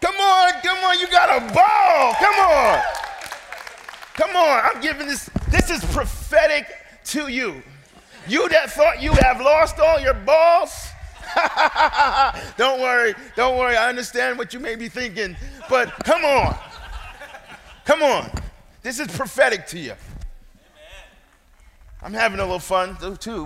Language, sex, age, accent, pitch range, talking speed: English, male, 30-49, American, 195-275 Hz, 145 wpm